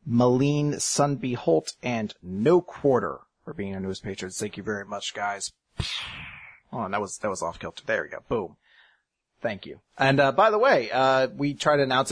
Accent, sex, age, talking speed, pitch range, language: American, male, 30-49, 195 wpm, 120-150 Hz, English